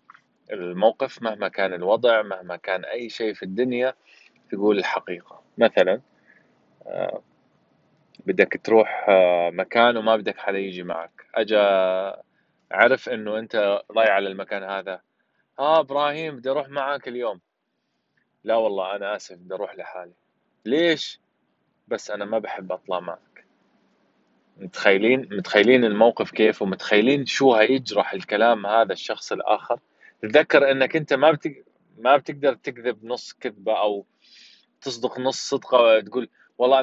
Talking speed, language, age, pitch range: 120 wpm, Arabic, 20-39, 110-140 Hz